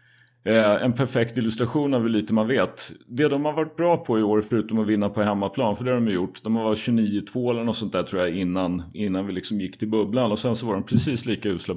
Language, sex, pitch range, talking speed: Swedish, male, 110-125 Hz, 260 wpm